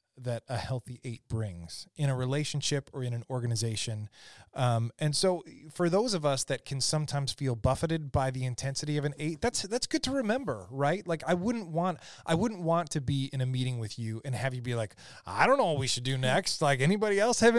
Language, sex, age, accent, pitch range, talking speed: English, male, 20-39, American, 115-155 Hz, 230 wpm